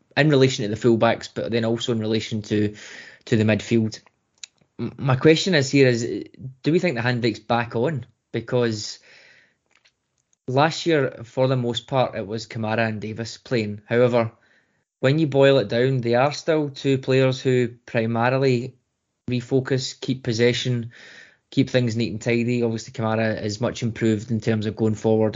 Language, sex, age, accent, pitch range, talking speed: English, male, 20-39, British, 110-130 Hz, 165 wpm